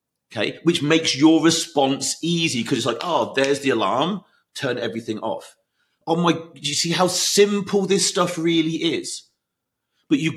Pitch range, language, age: 130-170 Hz, English, 40-59